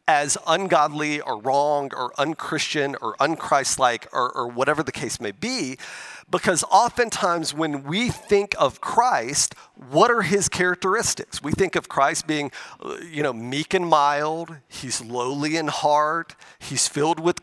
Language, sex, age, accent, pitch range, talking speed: English, male, 40-59, American, 150-185 Hz, 150 wpm